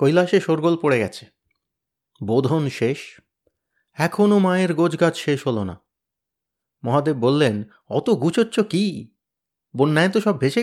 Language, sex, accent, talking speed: Bengali, male, native, 120 wpm